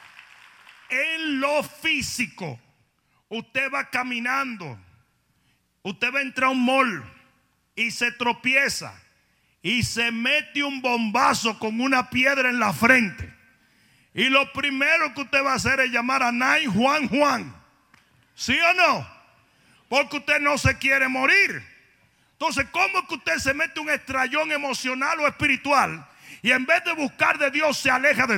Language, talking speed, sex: Spanish, 150 wpm, male